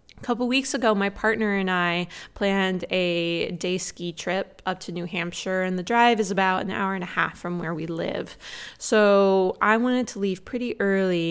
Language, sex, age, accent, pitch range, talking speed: English, female, 20-39, American, 170-205 Hz, 195 wpm